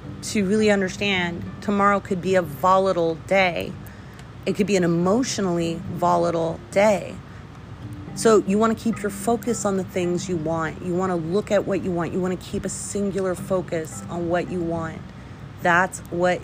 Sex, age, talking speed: female, 30-49, 180 wpm